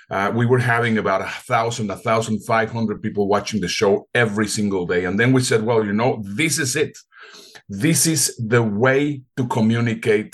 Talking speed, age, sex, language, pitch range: 195 wpm, 50-69, male, English, 110-130 Hz